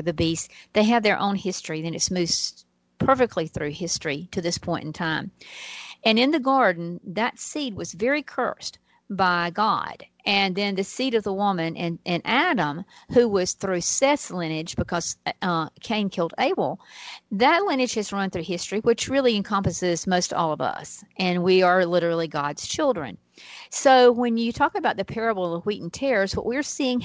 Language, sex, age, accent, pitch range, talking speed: English, female, 50-69, American, 175-235 Hz, 180 wpm